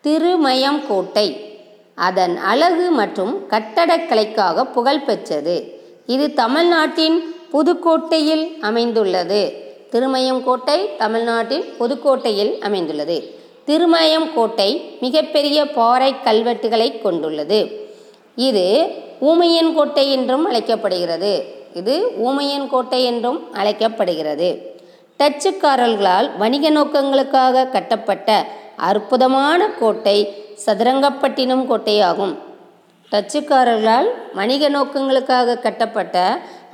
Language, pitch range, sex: Tamil, 215-300 Hz, female